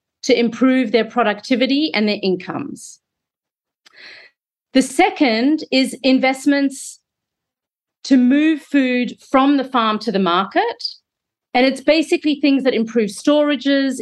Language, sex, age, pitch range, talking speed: English, female, 40-59, 220-275 Hz, 115 wpm